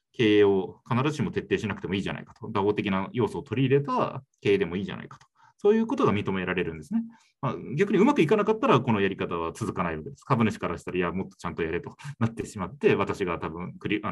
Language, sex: Japanese, male